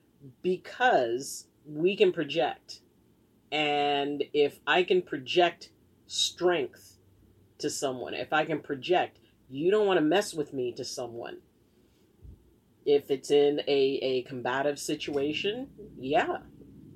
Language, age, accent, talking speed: English, 40-59, American, 115 wpm